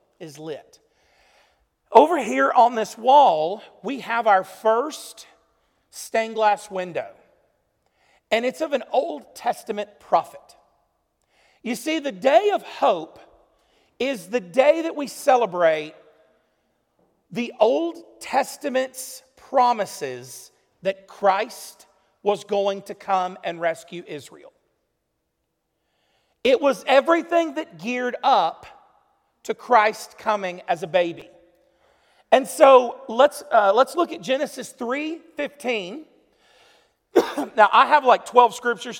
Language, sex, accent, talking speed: English, male, American, 110 wpm